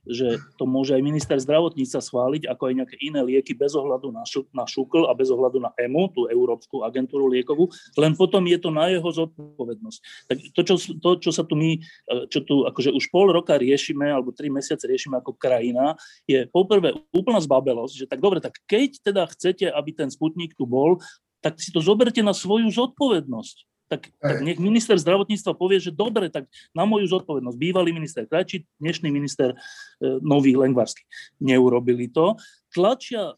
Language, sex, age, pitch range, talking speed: Slovak, male, 30-49, 135-195 Hz, 180 wpm